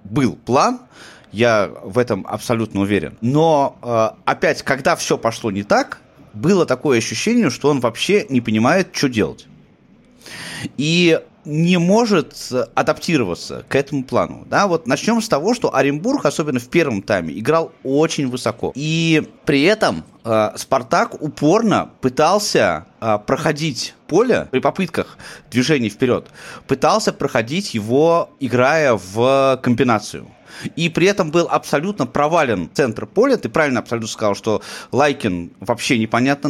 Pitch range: 115-155 Hz